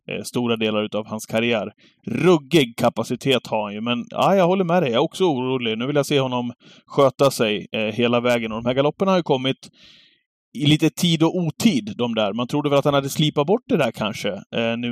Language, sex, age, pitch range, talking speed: Swedish, male, 30-49, 115-135 Hz, 235 wpm